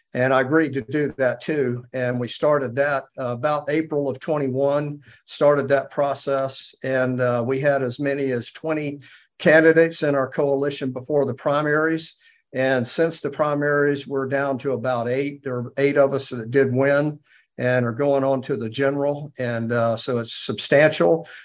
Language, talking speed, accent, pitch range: English, 175 wpm, American, 125-150 Hz